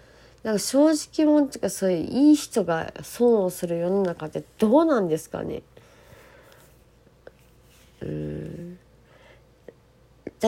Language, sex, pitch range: Japanese, female, 180-255 Hz